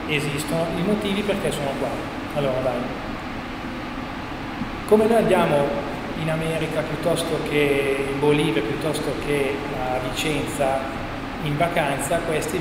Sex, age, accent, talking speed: male, 30-49, native, 115 wpm